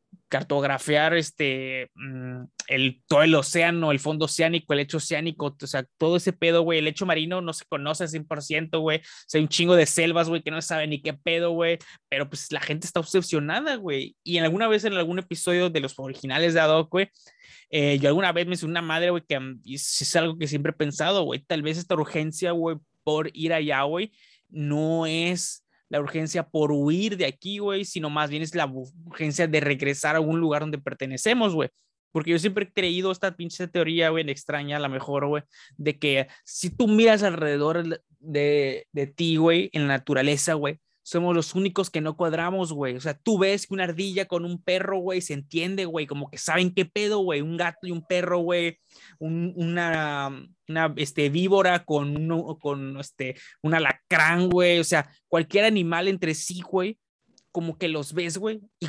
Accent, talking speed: Mexican, 200 wpm